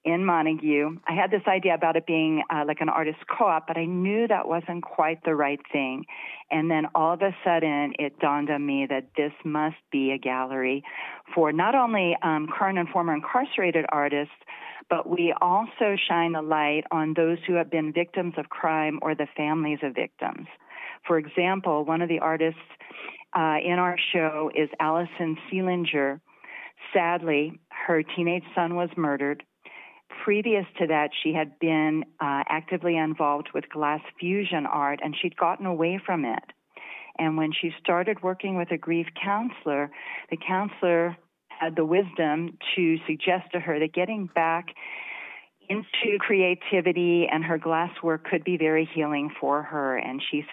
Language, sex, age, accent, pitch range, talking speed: English, female, 40-59, American, 150-175 Hz, 165 wpm